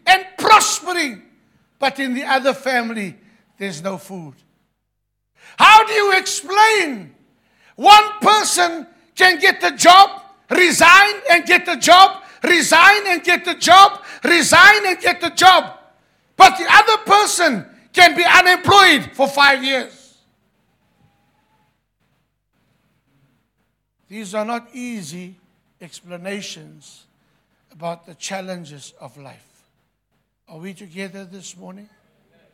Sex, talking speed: male, 110 wpm